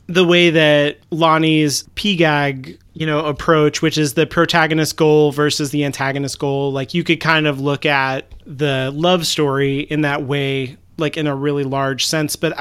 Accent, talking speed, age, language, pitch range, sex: American, 175 wpm, 30-49, English, 135-160 Hz, male